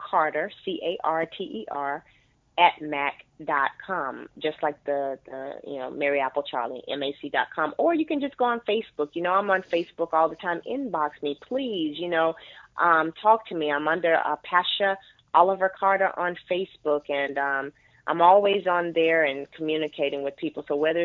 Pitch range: 145-170 Hz